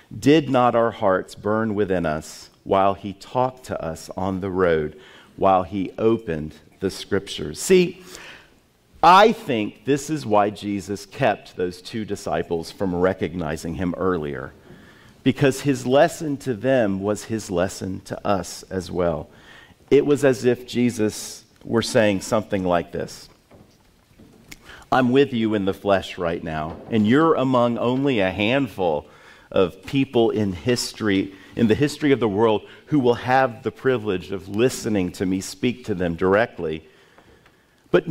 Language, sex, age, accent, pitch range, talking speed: English, male, 50-69, American, 100-145 Hz, 150 wpm